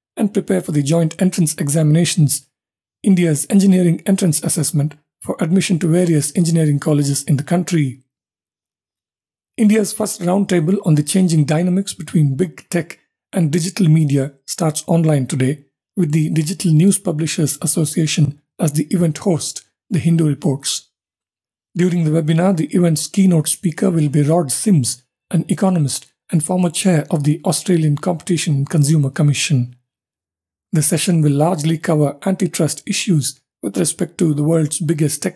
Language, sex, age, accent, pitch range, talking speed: English, male, 50-69, Indian, 150-180 Hz, 145 wpm